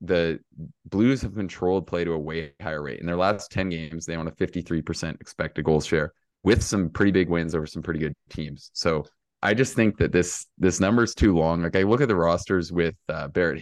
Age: 20-39